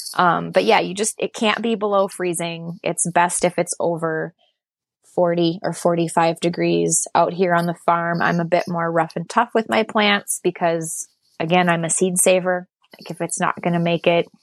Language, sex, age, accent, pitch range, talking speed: English, female, 20-39, American, 170-190 Hz, 200 wpm